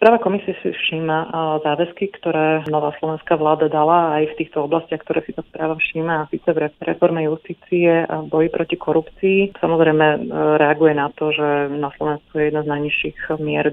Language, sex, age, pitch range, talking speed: Slovak, female, 30-49, 145-155 Hz, 175 wpm